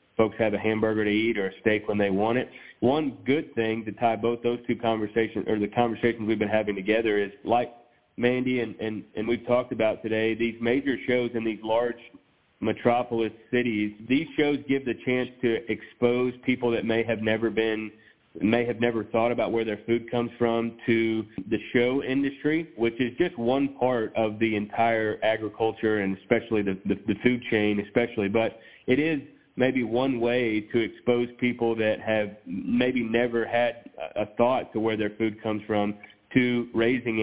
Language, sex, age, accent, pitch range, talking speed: English, male, 30-49, American, 105-120 Hz, 185 wpm